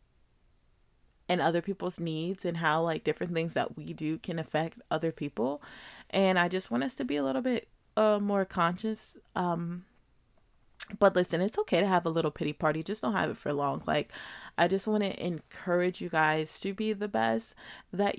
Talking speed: 195 wpm